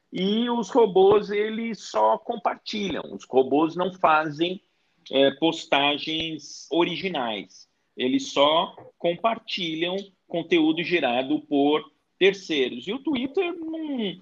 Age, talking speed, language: 40-59, 100 wpm, Portuguese